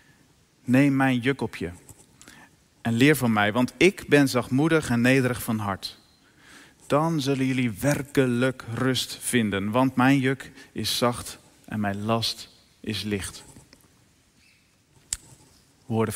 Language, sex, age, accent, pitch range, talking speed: Dutch, male, 40-59, Dutch, 110-140 Hz, 125 wpm